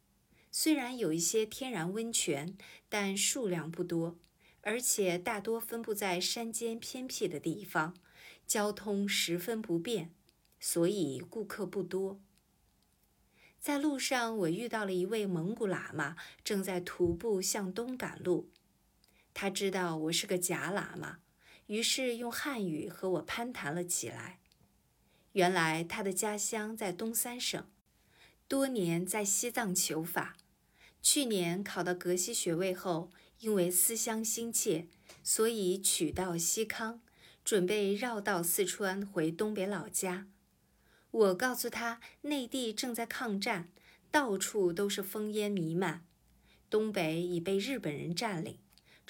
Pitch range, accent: 175-225 Hz, native